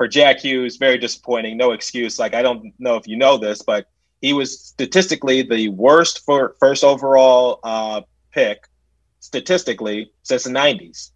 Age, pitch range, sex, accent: 30-49, 110-140 Hz, male, American